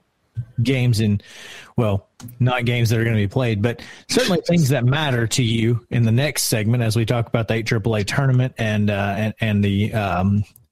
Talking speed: 200 wpm